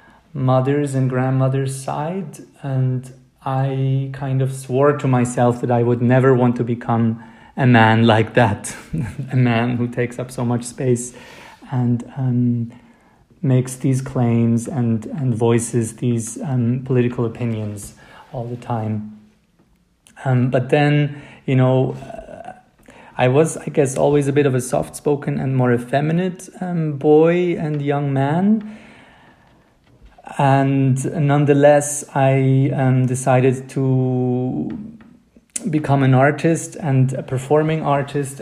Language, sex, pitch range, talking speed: German, male, 125-140 Hz, 130 wpm